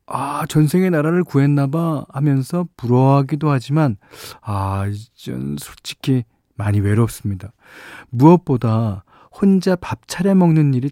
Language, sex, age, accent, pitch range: Korean, male, 40-59, native, 105-145 Hz